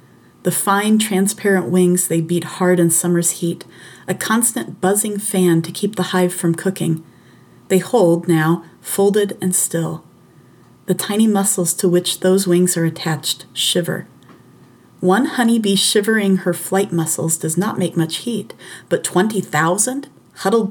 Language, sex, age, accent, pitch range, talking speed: English, female, 30-49, American, 165-200 Hz, 145 wpm